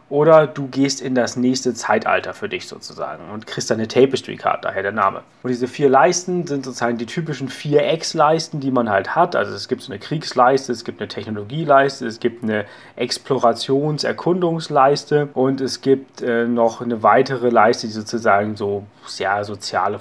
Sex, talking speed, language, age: male, 185 wpm, German, 30-49